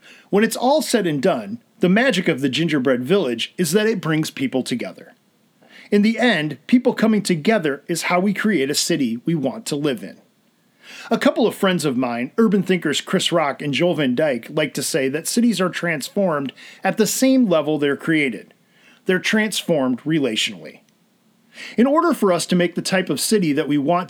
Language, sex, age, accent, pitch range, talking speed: English, male, 40-59, American, 165-230 Hz, 195 wpm